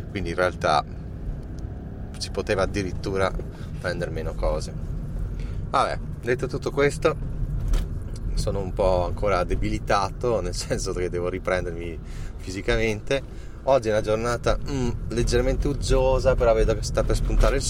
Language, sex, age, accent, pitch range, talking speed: Italian, male, 30-49, native, 90-115 Hz, 130 wpm